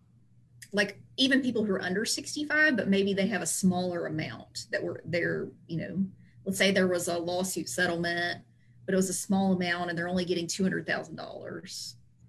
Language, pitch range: English, 170-195 Hz